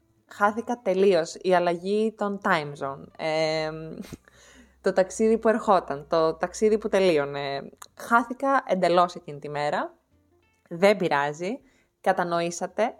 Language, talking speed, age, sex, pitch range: Greek, 105 wpm, 20-39, female, 170-240 Hz